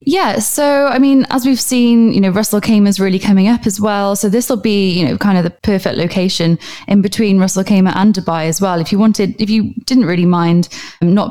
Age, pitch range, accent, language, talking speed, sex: 10-29, 175-215 Hz, British, English, 235 wpm, female